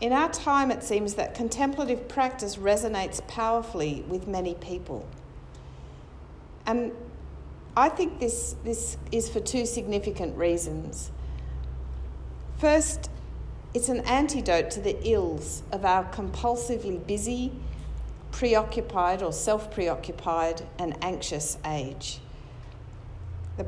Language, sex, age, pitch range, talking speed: English, female, 50-69, 150-230 Hz, 105 wpm